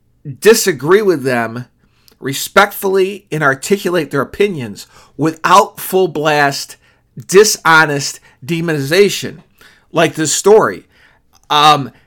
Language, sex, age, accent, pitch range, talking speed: English, male, 40-59, American, 135-190 Hz, 85 wpm